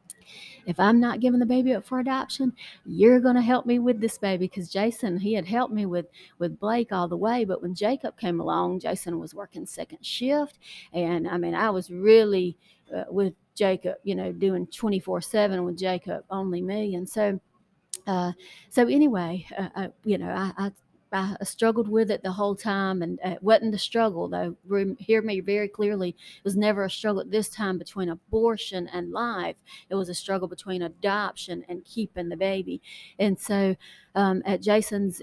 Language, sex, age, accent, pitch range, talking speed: English, female, 40-59, American, 180-215 Hz, 190 wpm